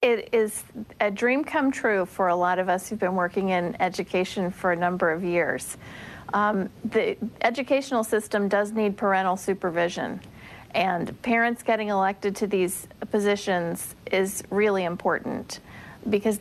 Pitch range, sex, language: 185-220 Hz, female, English